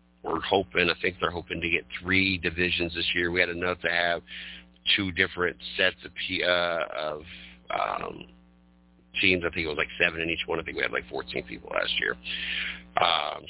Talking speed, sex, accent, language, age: 195 wpm, male, American, English, 50-69